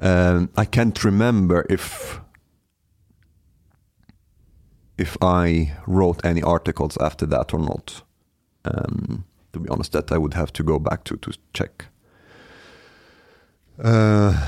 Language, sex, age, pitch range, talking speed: Swedish, male, 40-59, 85-100 Hz, 120 wpm